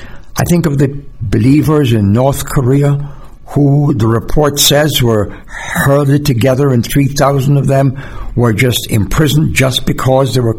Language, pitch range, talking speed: English, 115-150 Hz, 145 wpm